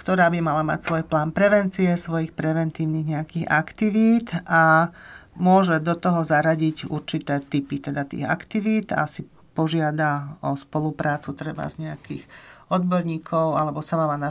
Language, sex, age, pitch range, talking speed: Slovak, male, 40-59, 155-180 Hz, 145 wpm